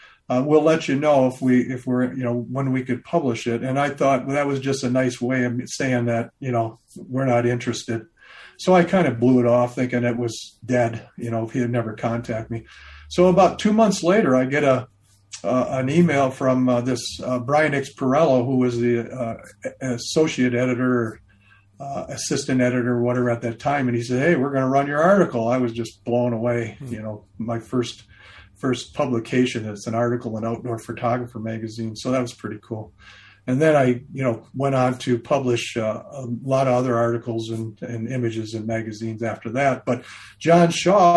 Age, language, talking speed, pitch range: 50-69, English, 205 wpm, 115-135 Hz